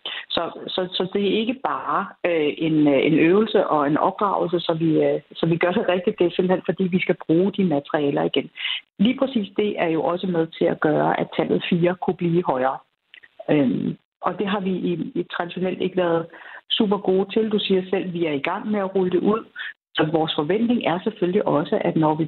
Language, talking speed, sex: Danish, 220 wpm, female